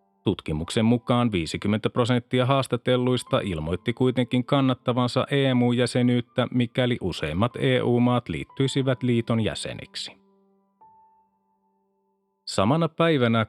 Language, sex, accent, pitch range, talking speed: Finnish, male, native, 110-135 Hz, 75 wpm